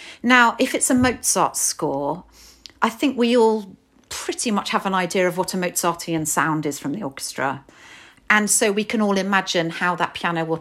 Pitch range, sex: 165-220 Hz, female